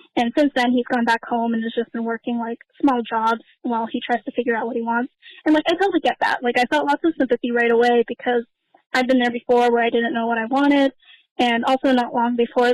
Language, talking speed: English, 260 wpm